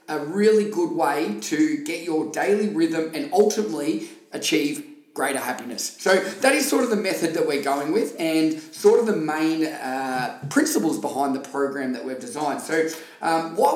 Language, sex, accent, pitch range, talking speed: English, male, Australian, 145-205 Hz, 180 wpm